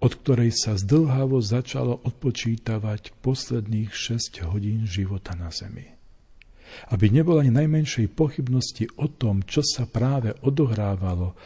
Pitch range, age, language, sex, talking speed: 95-120 Hz, 50-69, Slovak, male, 120 wpm